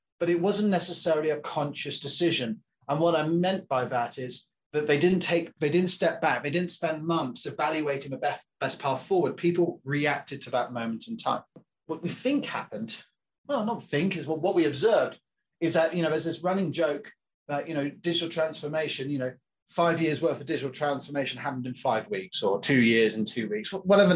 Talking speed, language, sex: 205 wpm, English, male